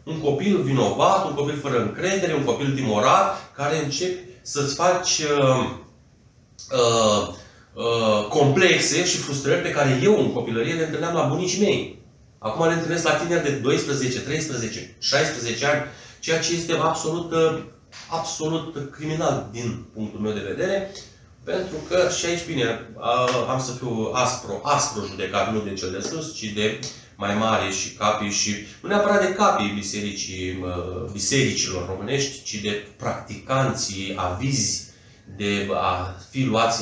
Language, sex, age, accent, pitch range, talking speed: Romanian, male, 30-49, native, 110-150 Hz, 145 wpm